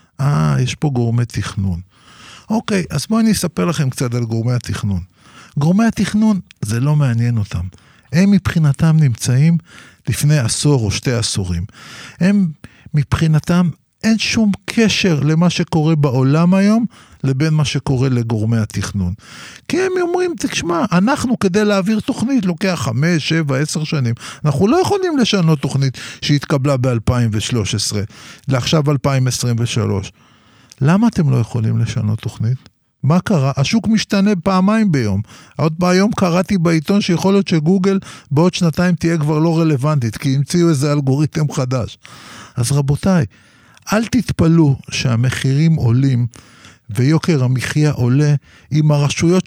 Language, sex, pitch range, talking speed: Hebrew, male, 120-180 Hz, 130 wpm